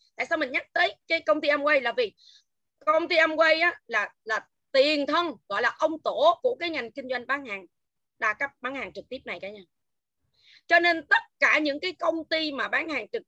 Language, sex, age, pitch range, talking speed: Vietnamese, female, 20-39, 255-325 Hz, 230 wpm